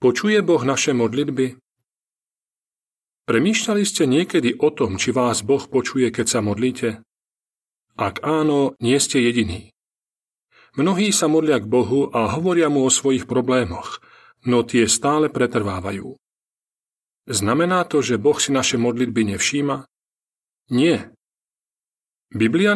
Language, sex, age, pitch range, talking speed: Slovak, male, 40-59, 115-150 Hz, 120 wpm